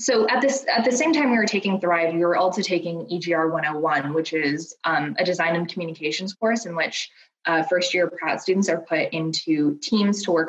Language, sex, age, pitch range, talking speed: English, female, 20-39, 160-190 Hz, 210 wpm